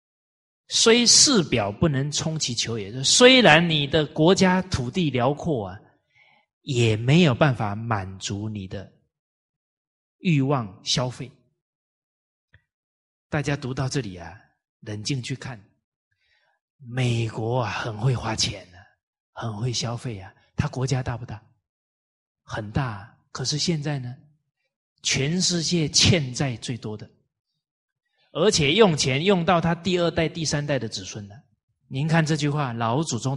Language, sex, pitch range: Chinese, male, 115-160 Hz